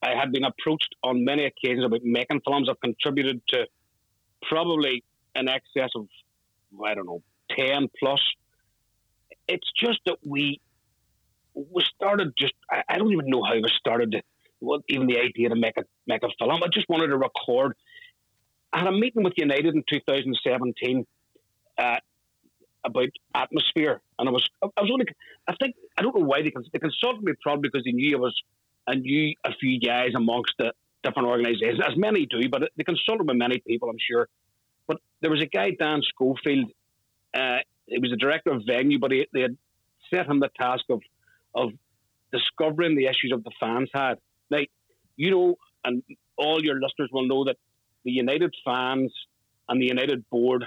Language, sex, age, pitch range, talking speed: Finnish, male, 40-59, 120-145 Hz, 180 wpm